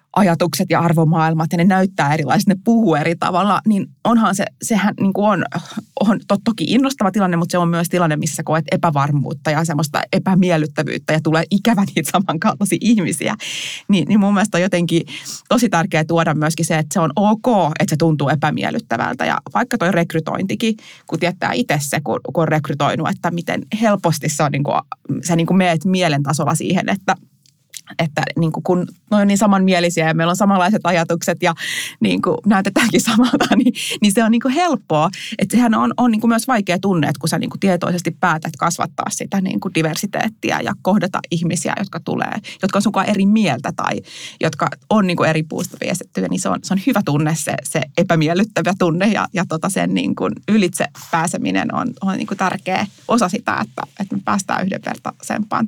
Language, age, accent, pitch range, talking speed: Finnish, 20-39, native, 165-210 Hz, 190 wpm